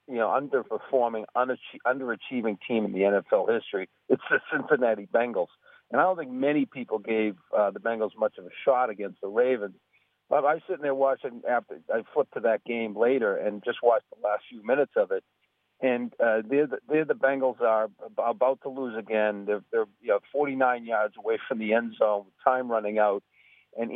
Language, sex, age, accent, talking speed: English, male, 40-59, American, 190 wpm